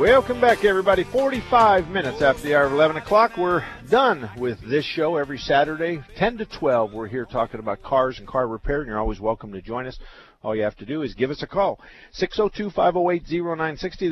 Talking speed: 200 wpm